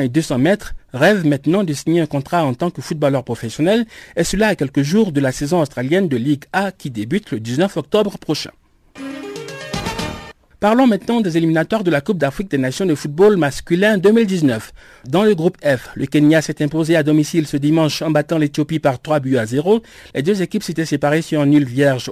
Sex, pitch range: male, 135-185 Hz